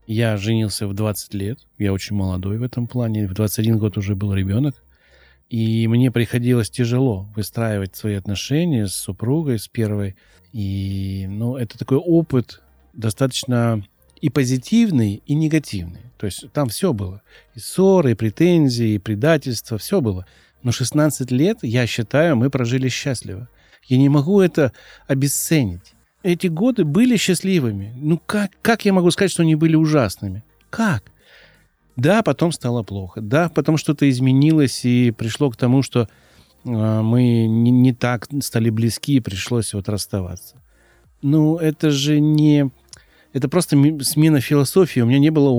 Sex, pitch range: male, 110-145 Hz